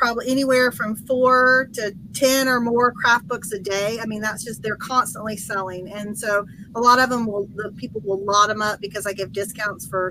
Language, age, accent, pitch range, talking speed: English, 40-59, American, 195-220 Hz, 215 wpm